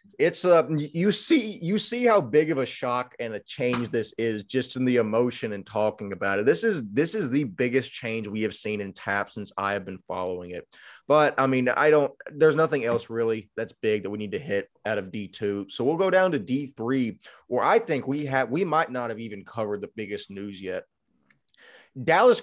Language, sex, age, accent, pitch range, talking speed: English, male, 20-39, American, 110-150 Hz, 220 wpm